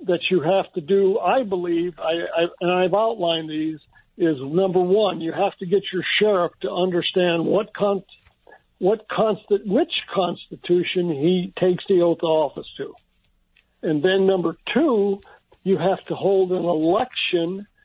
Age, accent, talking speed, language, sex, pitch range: 60-79, American, 160 wpm, English, male, 170-205 Hz